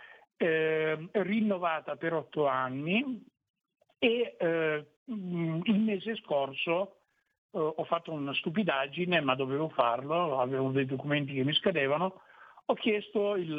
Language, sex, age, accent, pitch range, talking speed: Italian, male, 60-79, native, 145-190 Hz, 120 wpm